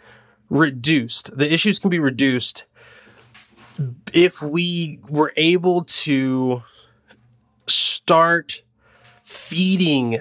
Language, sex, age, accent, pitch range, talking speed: English, male, 20-39, American, 115-150 Hz, 75 wpm